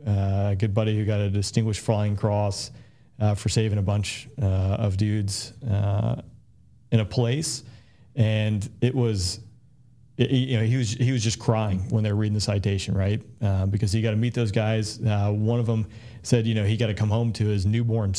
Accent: American